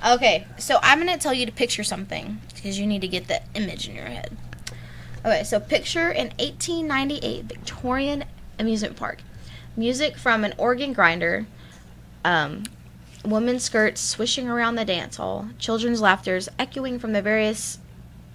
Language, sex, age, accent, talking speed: English, female, 20-39, American, 150 wpm